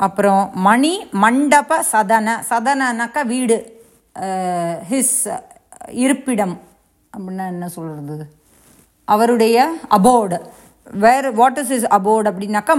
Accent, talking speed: Indian, 95 wpm